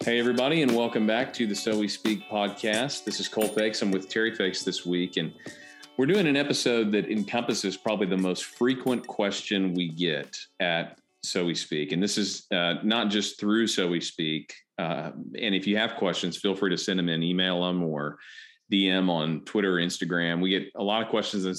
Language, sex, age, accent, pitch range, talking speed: English, male, 40-59, American, 90-105 Hz, 210 wpm